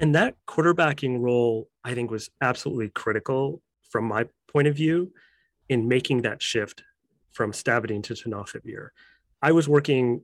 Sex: male